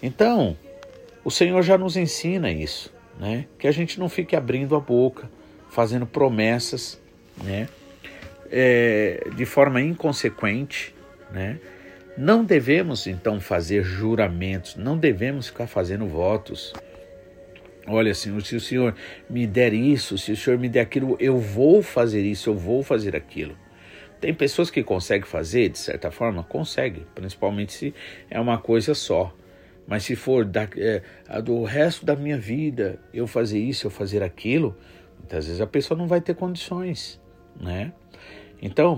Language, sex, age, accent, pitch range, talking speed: Portuguese, male, 50-69, Brazilian, 100-145 Hz, 145 wpm